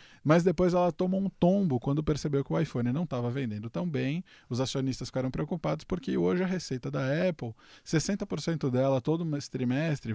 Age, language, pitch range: 20-39, Portuguese, 120-170 Hz